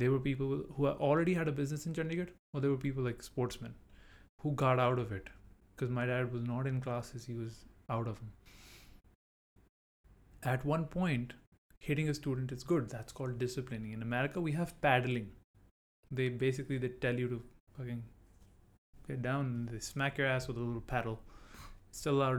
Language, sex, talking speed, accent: English, male, 180 wpm, Indian